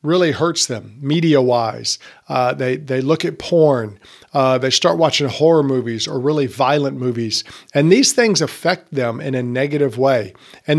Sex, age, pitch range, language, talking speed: male, 50-69, 130-165 Hz, English, 170 wpm